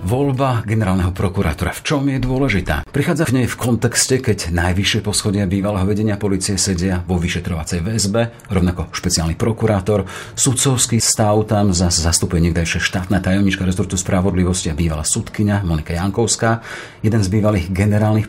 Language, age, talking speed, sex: Slovak, 40-59, 140 wpm, male